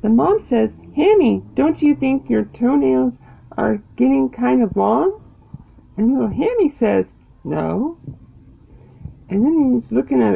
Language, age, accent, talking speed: English, 40-59, American, 140 wpm